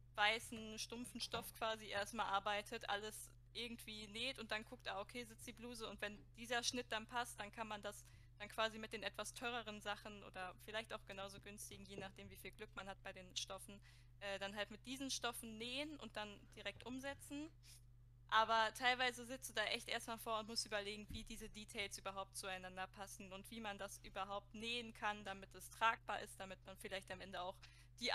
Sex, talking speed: female, 200 wpm